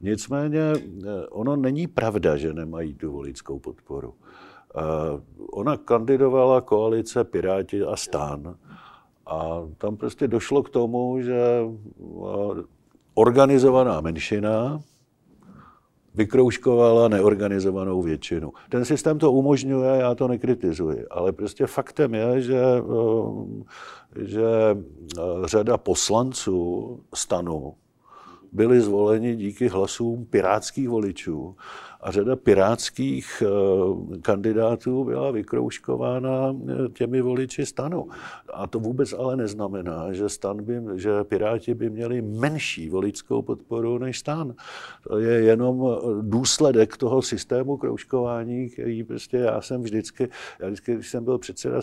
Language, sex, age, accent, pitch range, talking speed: Czech, male, 50-69, native, 100-125 Hz, 105 wpm